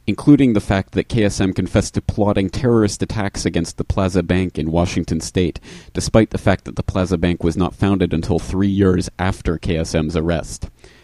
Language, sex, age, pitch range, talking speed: English, male, 30-49, 85-105 Hz, 180 wpm